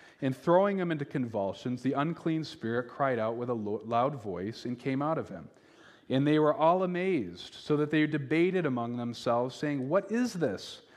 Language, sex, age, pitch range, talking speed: English, male, 40-59, 115-155 Hz, 190 wpm